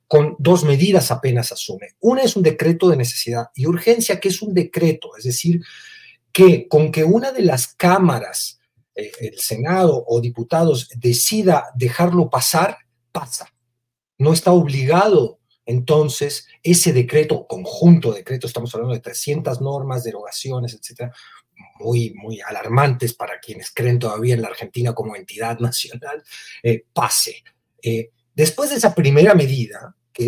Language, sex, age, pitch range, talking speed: Spanish, male, 40-59, 120-170 Hz, 145 wpm